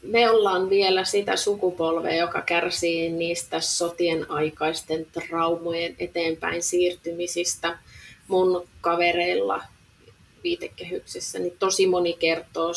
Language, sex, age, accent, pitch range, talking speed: Finnish, female, 30-49, native, 165-205 Hz, 95 wpm